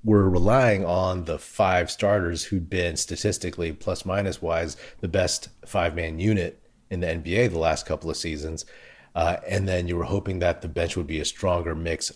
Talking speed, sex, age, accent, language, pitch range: 190 wpm, male, 30-49, American, English, 85-105 Hz